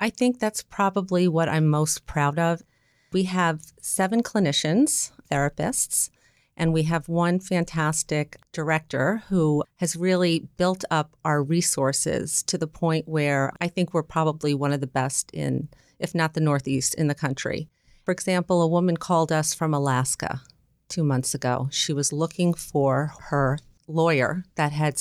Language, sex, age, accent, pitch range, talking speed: English, female, 40-59, American, 135-165 Hz, 160 wpm